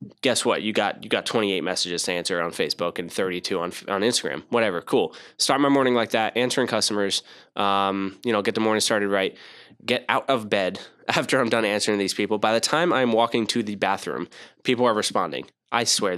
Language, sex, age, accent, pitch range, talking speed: English, male, 10-29, American, 100-120 Hz, 220 wpm